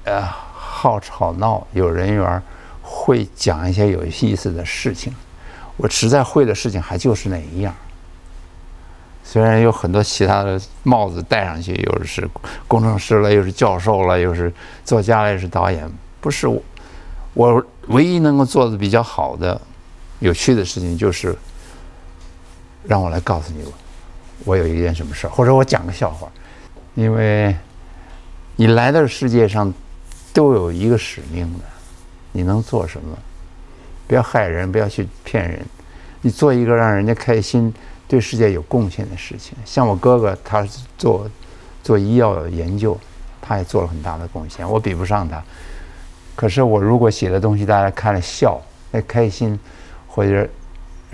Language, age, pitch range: Chinese, 60-79, 85-110 Hz